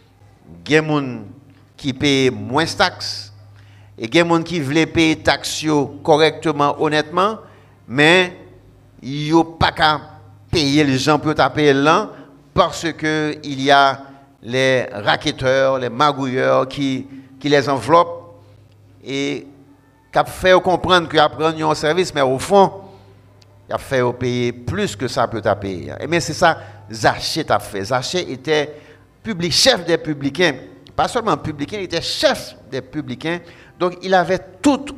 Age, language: 60-79, French